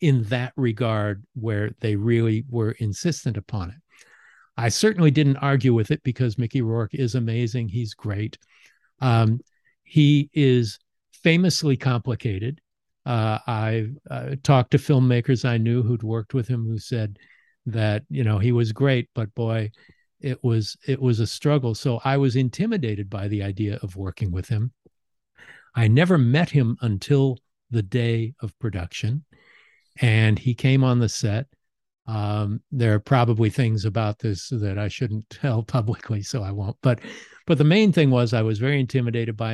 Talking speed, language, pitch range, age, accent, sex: 165 wpm, English, 110-135 Hz, 50-69, American, male